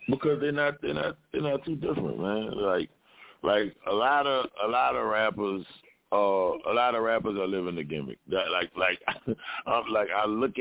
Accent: American